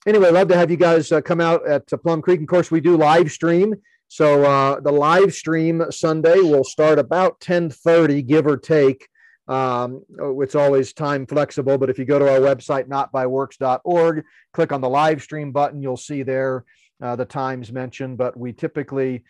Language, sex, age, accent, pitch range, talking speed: English, male, 40-59, American, 125-155 Hz, 190 wpm